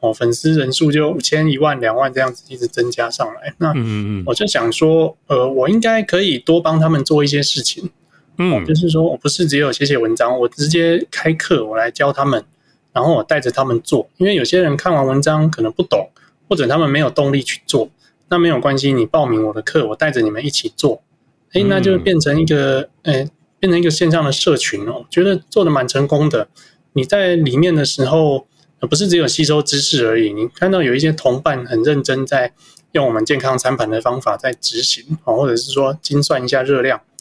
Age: 20-39